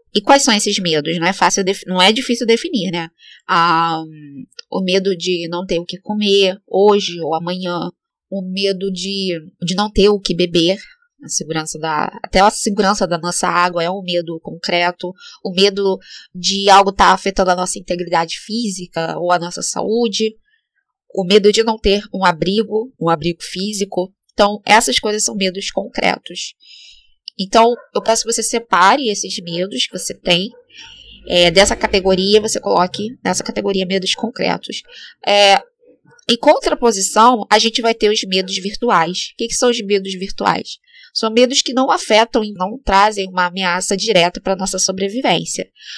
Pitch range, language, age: 180-230 Hz, Portuguese, 10-29